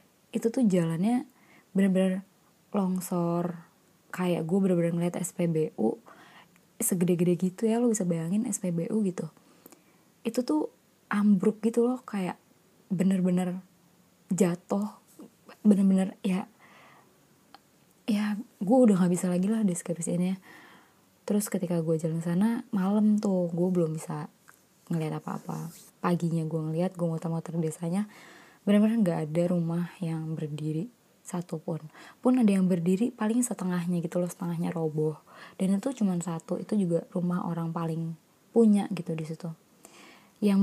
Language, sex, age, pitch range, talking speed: Indonesian, female, 20-39, 170-205 Hz, 125 wpm